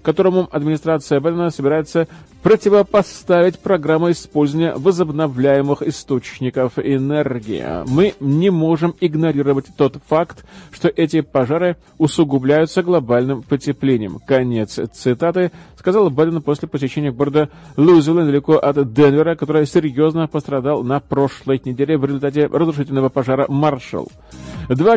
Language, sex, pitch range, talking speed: Russian, male, 145-170 Hz, 110 wpm